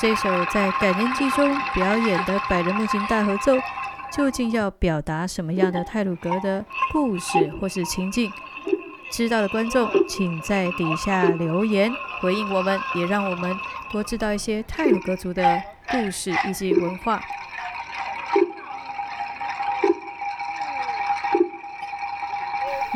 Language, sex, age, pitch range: Chinese, female, 30-49, 185-265 Hz